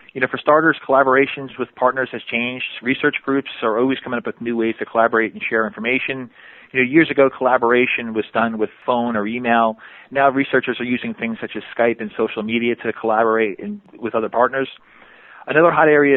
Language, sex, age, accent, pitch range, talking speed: English, male, 30-49, American, 115-135 Hz, 195 wpm